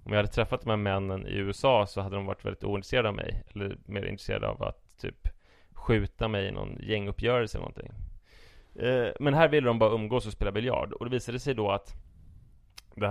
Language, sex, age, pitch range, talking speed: English, male, 20-39, 100-120 Hz, 205 wpm